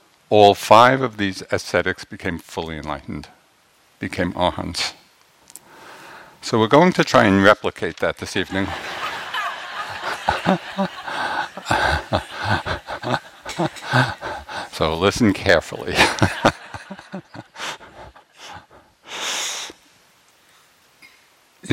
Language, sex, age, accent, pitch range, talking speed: English, male, 60-79, American, 85-110 Hz, 65 wpm